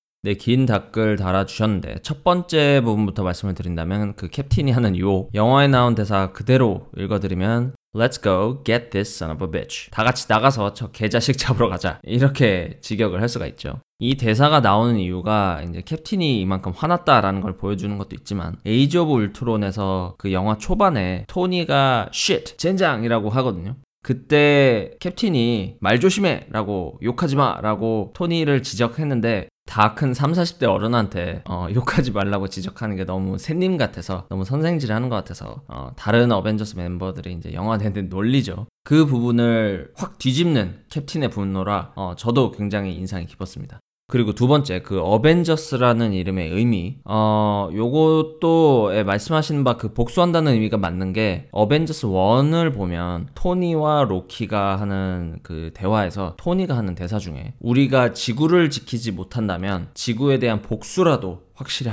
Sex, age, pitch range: male, 20-39, 95-135 Hz